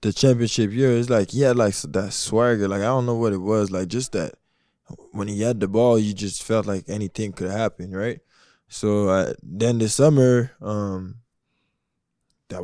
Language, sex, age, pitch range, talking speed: English, male, 20-39, 95-115 Hz, 200 wpm